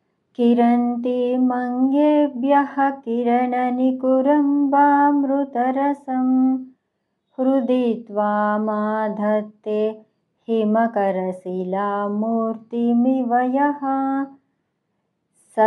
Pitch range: 215-275 Hz